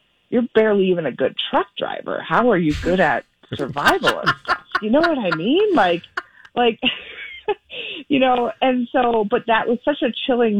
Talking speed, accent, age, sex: 180 wpm, American, 30-49, female